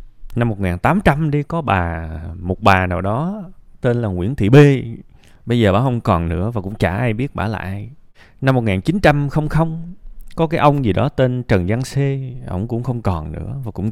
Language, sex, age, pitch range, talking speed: Vietnamese, male, 20-39, 95-135 Hz, 200 wpm